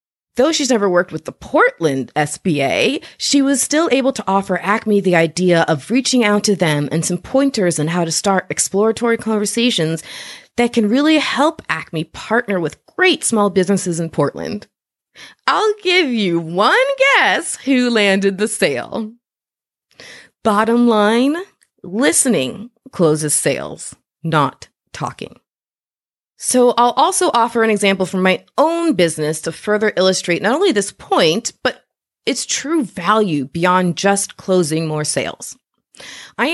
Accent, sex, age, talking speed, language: American, female, 30-49, 140 wpm, English